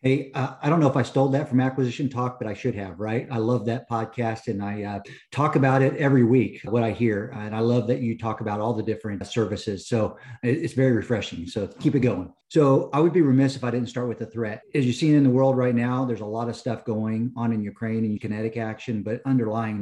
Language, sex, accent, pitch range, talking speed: English, male, American, 110-130 Hz, 255 wpm